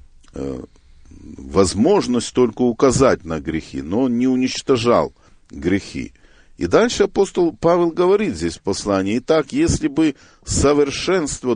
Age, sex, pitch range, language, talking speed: 50-69, male, 90-140 Hz, Russian, 115 wpm